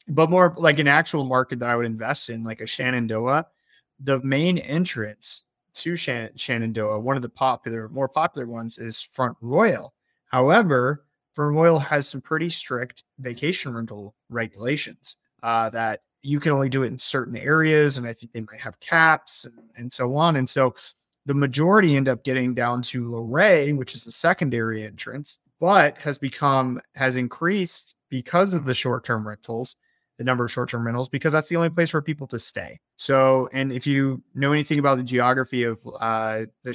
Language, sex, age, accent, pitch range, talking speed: English, male, 30-49, American, 115-140 Hz, 185 wpm